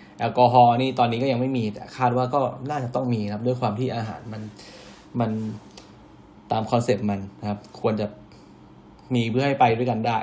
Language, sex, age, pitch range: Thai, male, 10-29, 105-125 Hz